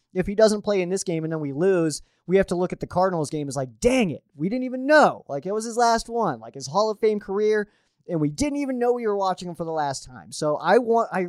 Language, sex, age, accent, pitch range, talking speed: English, male, 20-39, American, 145-190 Hz, 300 wpm